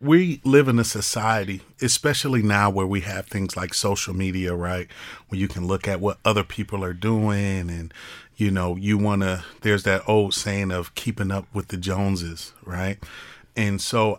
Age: 40-59